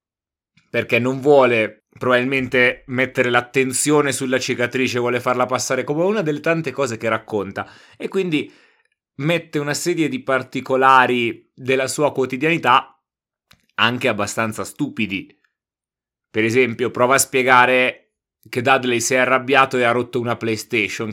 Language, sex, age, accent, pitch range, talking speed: Italian, male, 30-49, native, 110-130 Hz, 130 wpm